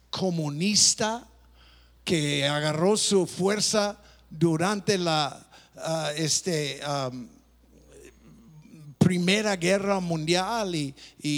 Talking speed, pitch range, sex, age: 80 wpm, 150-240 Hz, male, 50-69